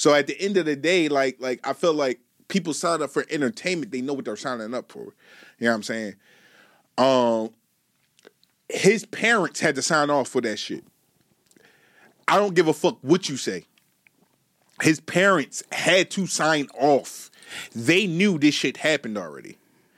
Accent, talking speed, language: American, 175 wpm, English